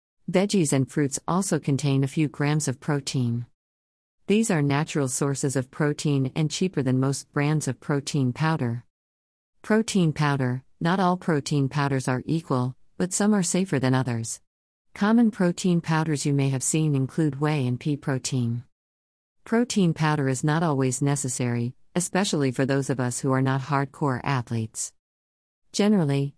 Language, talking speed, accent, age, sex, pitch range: English, 150 wpm, American, 50-69, female, 130-160 Hz